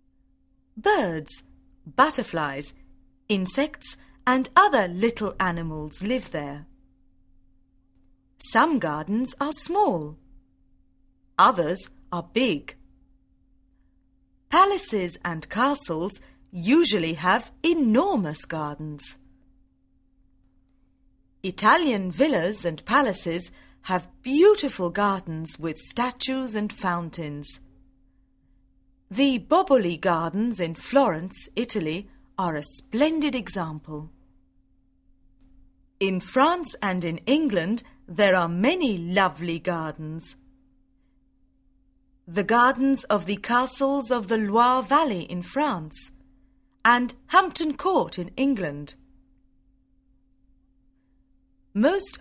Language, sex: Chinese, female